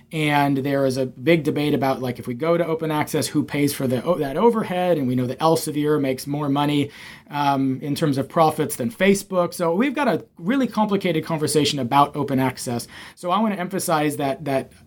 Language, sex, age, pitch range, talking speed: English, male, 30-49, 135-185 Hz, 210 wpm